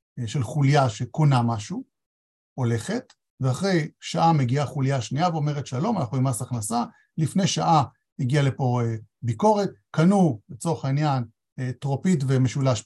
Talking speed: 120 wpm